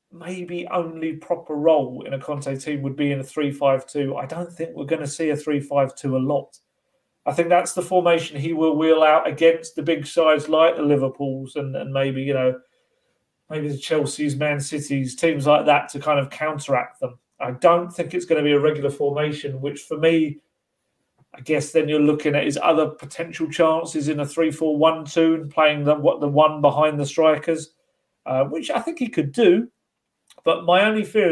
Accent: British